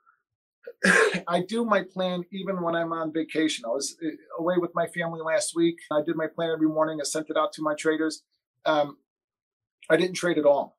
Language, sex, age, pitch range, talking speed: English, male, 40-59, 160-195 Hz, 200 wpm